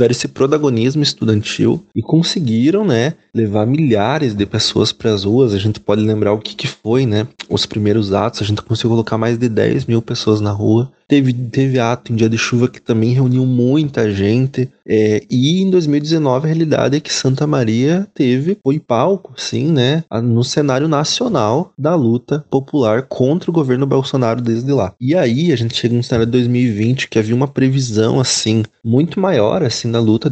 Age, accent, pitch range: 20-39, Brazilian, 110-135 Hz